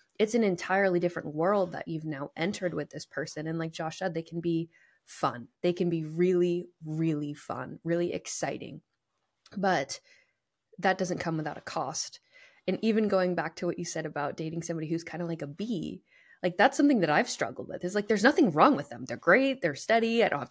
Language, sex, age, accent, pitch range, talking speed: English, female, 20-39, American, 165-210 Hz, 215 wpm